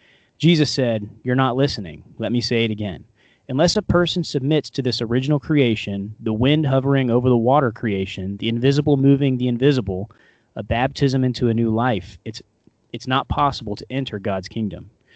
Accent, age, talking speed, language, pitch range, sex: American, 30-49, 175 wpm, English, 110-145 Hz, male